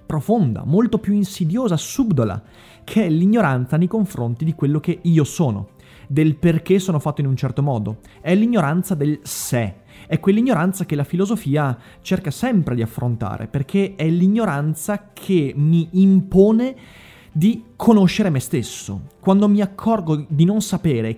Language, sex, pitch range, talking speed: Italian, male, 125-195 Hz, 145 wpm